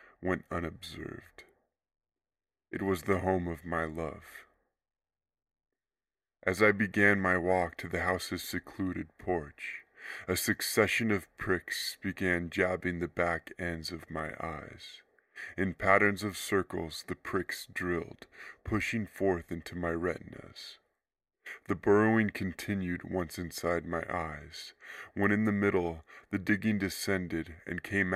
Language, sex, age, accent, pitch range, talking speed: English, female, 20-39, American, 85-95 Hz, 125 wpm